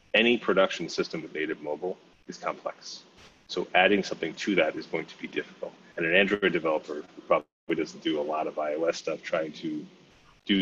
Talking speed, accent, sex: 185 wpm, American, male